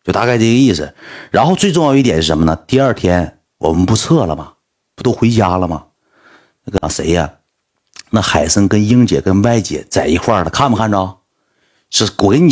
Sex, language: male, Chinese